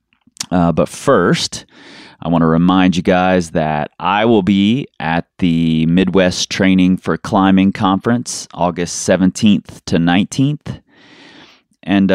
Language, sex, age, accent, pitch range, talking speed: English, male, 30-49, American, 80-95 Hz, 125 wpm